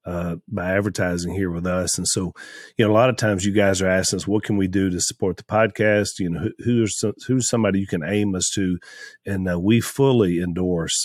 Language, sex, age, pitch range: English, male, 40-59, 85-100 Hz